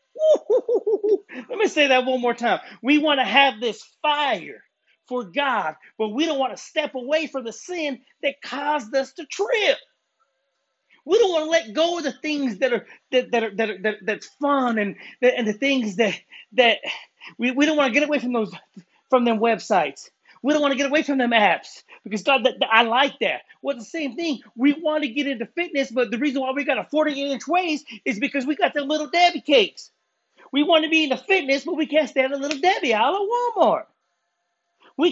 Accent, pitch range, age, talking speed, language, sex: American, 255-310 Hz, 30-49, 215 wpm, English, male